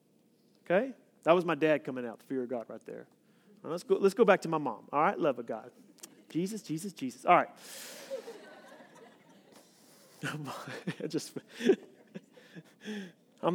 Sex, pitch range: male, 180-245 Hz